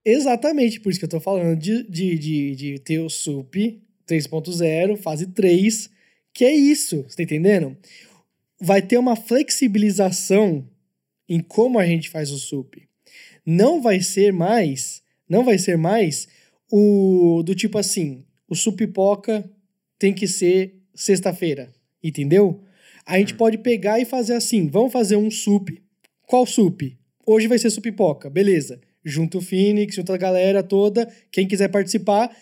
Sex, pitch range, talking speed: male, 170-240 Hz, 150 wpm